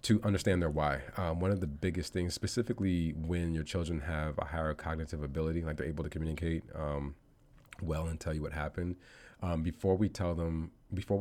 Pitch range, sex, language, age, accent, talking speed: 75-95 Hz, male, English, 30-49, American, 200 wpm